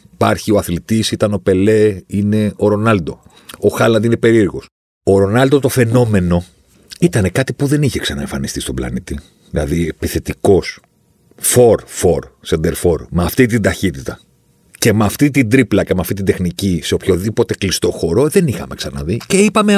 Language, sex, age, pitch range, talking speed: Greek, male, 50-69, 90-130 Hz, 160 wpm